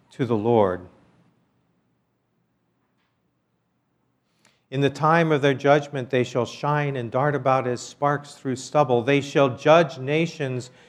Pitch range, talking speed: 140-200 Hz, 125 wpm